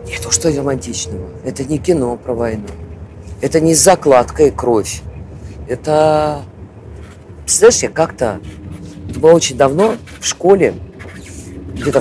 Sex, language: female, Russian